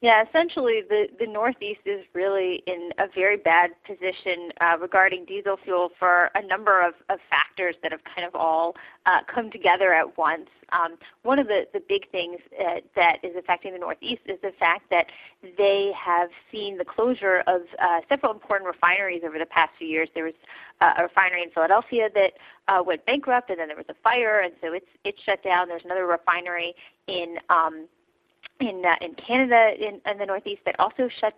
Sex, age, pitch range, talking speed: female, 30-49, 180-225 Hz, 200 wpm